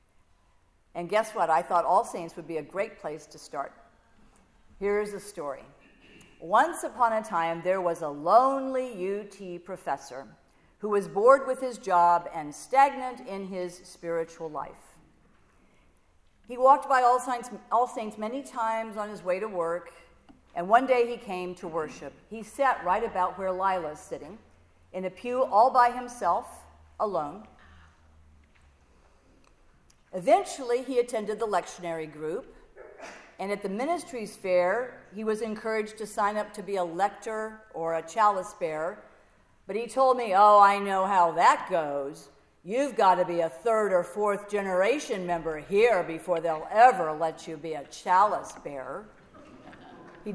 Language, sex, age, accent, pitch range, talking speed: English, female, 50-69, American, 165-225 Hz, 155 wpm